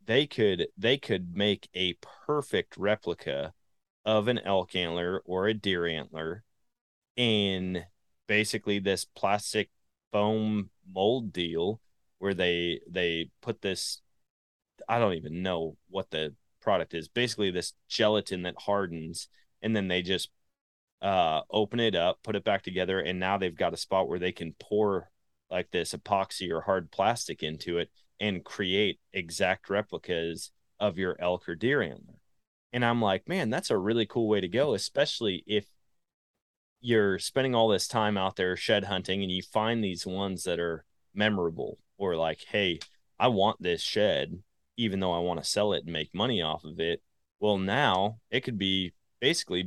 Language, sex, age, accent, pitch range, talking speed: English, male, 30-49, American, 85-105 Hz, 165 wpm